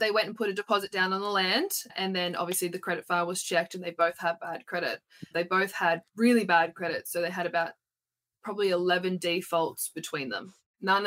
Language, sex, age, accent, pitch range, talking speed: English, female, 20-39, Australian, 170-200 Hz, 215 wpm